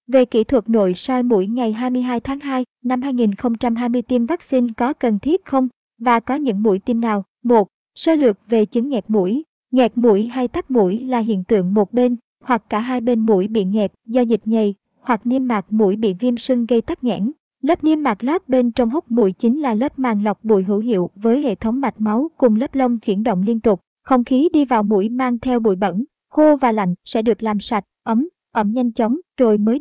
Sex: male